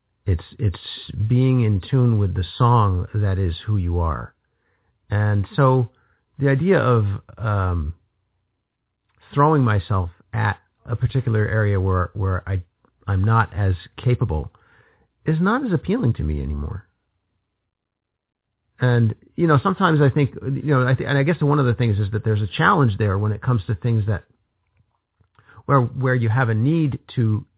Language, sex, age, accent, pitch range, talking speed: English, male, 50-69, American, 100-125 Hz, 165 wpm